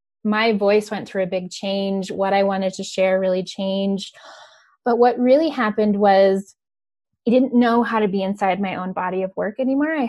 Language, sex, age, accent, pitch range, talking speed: English, female, 20-39, American, 195-225 Hz, 195 wpm